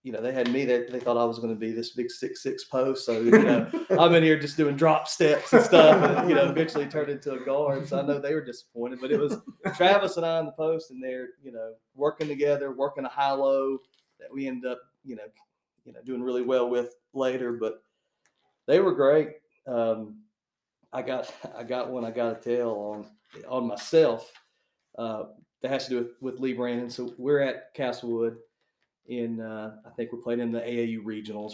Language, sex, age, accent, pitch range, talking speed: English, male, 40-59, American, 120-155 Hz, 220 wpm